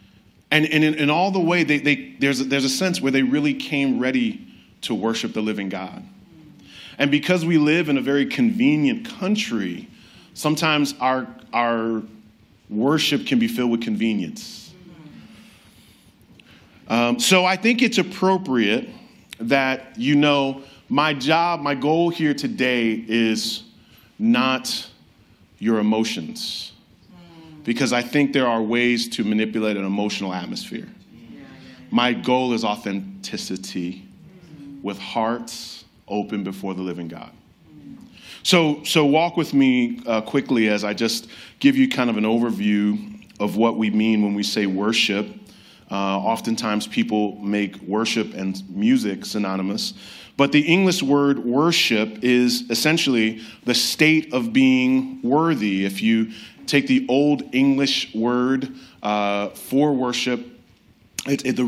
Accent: American